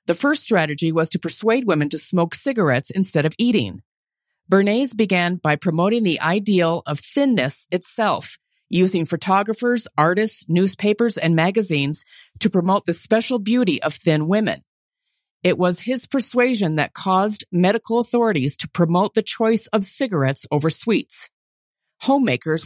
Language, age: English, 40-59